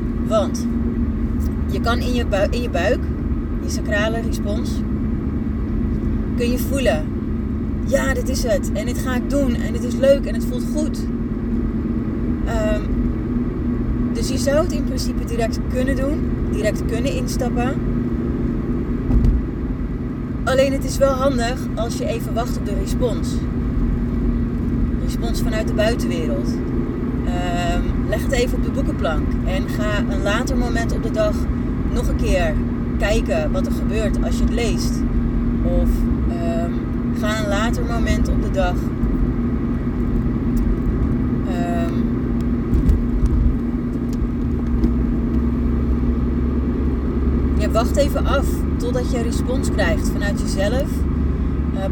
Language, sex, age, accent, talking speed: Dutch, female, 30-49, Dutch, 125 wpm